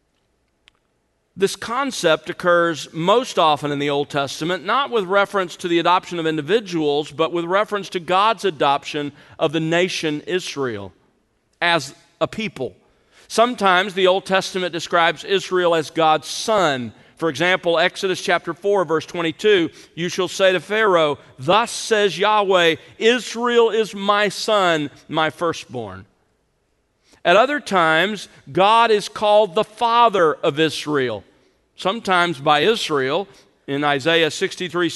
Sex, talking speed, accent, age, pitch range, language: male, 130 wpm, American, 40-59, 155-210 Hz, English